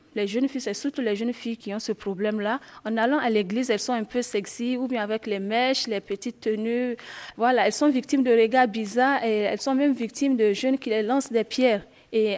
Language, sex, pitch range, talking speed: French, female, 210-255 Hz, 240 wpm